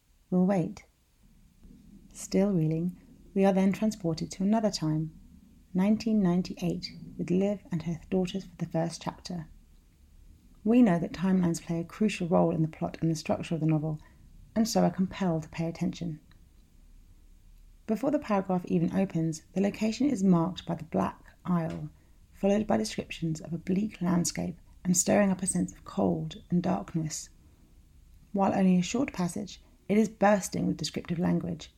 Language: English